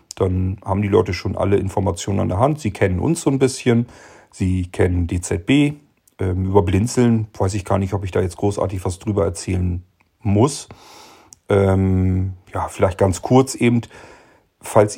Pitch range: 95-110 Hz